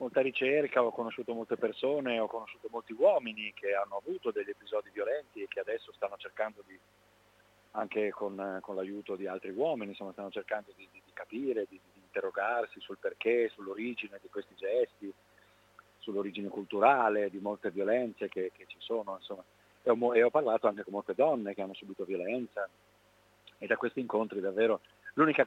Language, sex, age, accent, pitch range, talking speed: Italian, male, 40-59, native, 100-125 Hz, 170 wpm